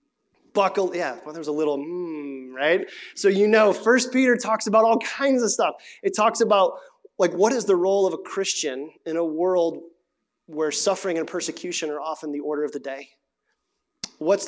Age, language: 30-49, English